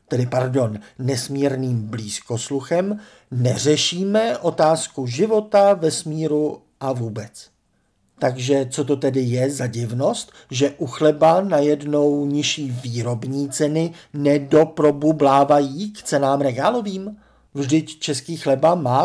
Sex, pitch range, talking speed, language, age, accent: male, 135-195 Hz, 105 wpm, Czech, 50-69, native